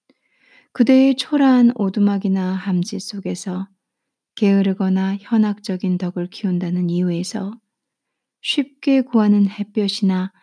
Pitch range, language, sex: 180-210 Hz, Korean, female